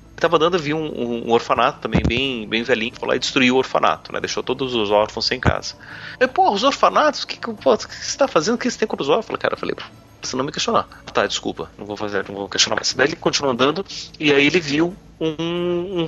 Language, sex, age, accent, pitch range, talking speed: Portuguese, male, 30-49, Brazilian, 120-160 Hz, 265 wpm